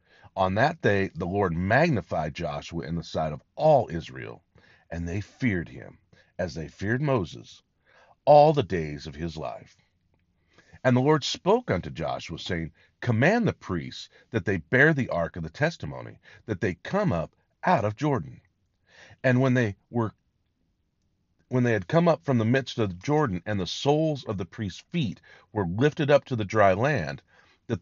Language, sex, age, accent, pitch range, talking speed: English, male, 40-59, American, 85-130 Hz, 175 wpm